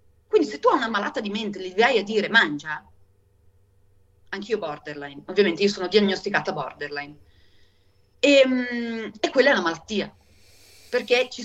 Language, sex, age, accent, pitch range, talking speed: Italian, female, 40-59, native, 180-260 Hz, 150 wpm